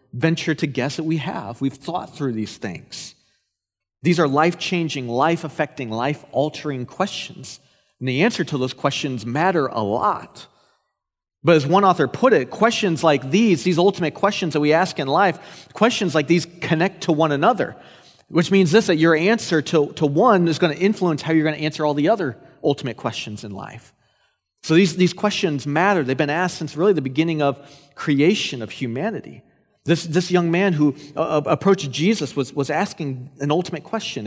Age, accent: 30-49, American